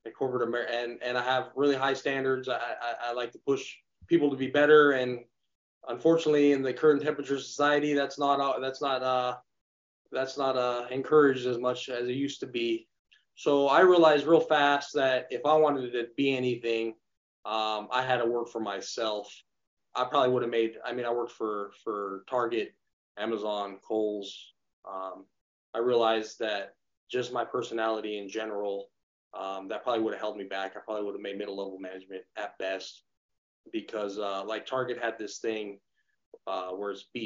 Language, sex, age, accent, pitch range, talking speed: English, male, 20-39, American, 100-135 Hz, 180 wpm